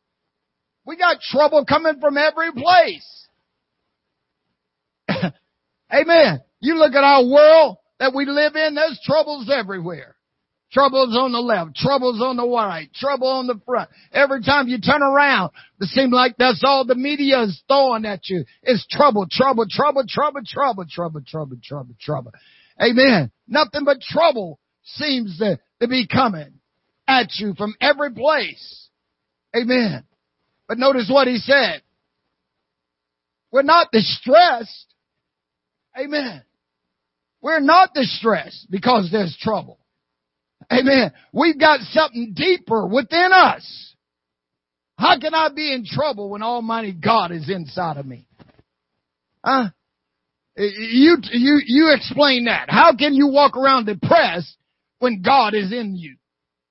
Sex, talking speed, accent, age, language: male, 135 wpm, American, 50-69, English